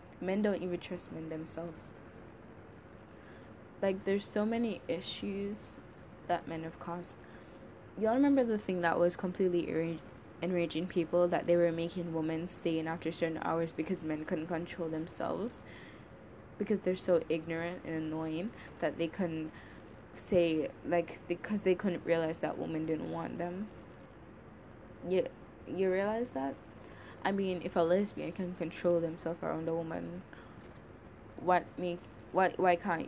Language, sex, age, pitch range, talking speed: English, female, 10-29, 155-185 Hz, 145 wpm